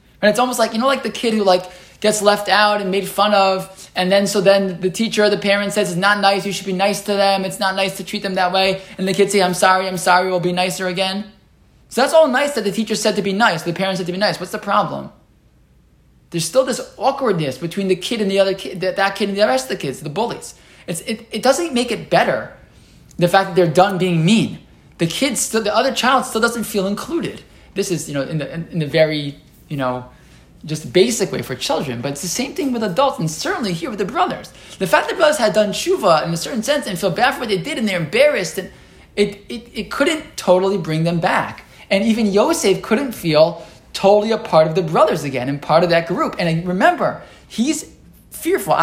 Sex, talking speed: male, 250 wpm